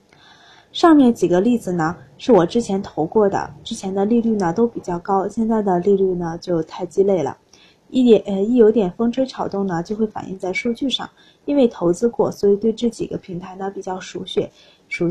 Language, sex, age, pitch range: Chinese, female, 20-39, 190-235 Hz